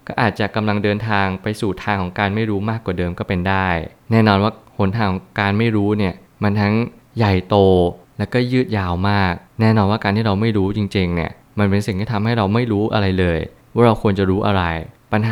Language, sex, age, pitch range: Thai, male, 20-39, 95-115 Hz